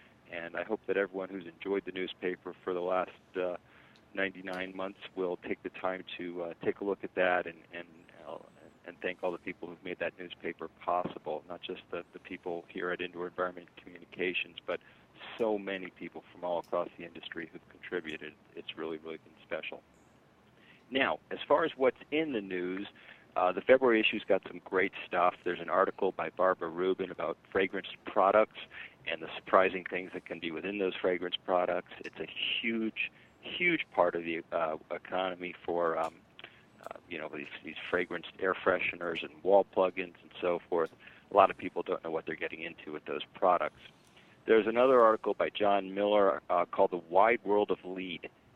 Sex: male